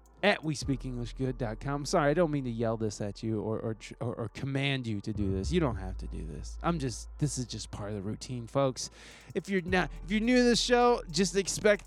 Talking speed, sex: 245 wpm, male